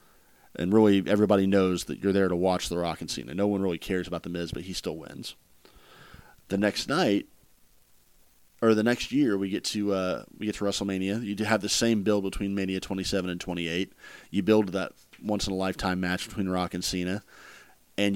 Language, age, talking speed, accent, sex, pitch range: English, 40-59, 195 wpm, American, male, 90-105 Hz